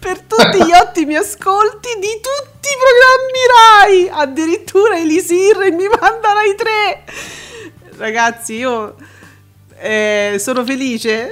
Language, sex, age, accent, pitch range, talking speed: Italian, female, 40-59, native, 210-295 Hz, 110 wpm